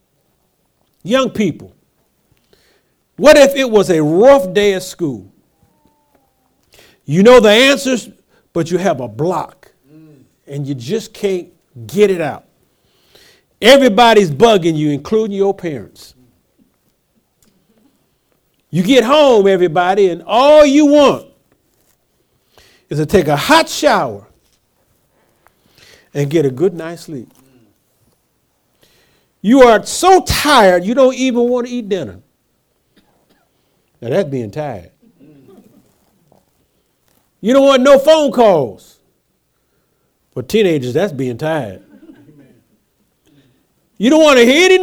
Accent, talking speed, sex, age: American, 115 wpm, male, 50-69